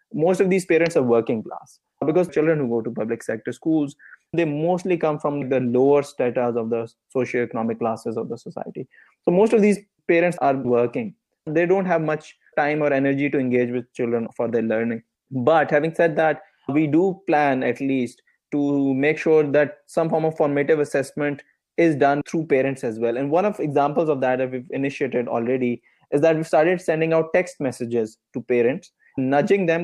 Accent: Indian